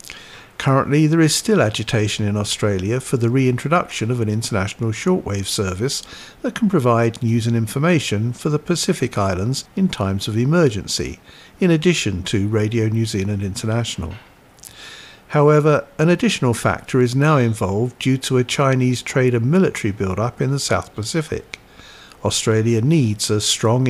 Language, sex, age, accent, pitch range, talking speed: English, male, 50-69, British, 105-145 Hz, 150 wpm